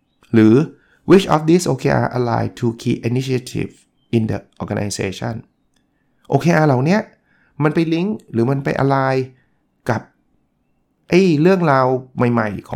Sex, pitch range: male, 115-155 Hz